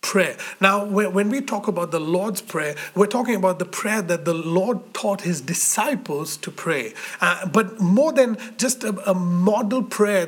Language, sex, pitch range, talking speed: English, male, 185-220 Hz, 180 wpm